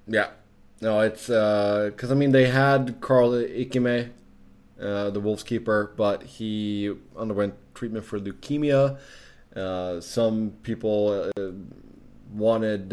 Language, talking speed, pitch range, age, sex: English, 120 wpm, 95-120 Hz, 20-39, male